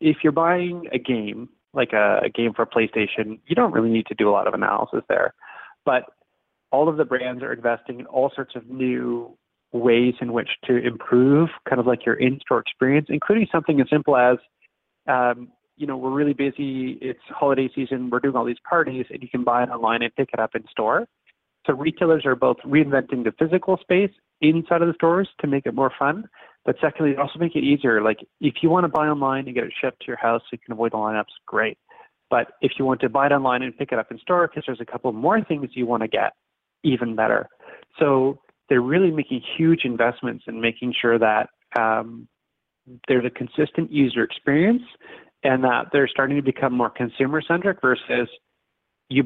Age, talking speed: 30-49, 210 wpm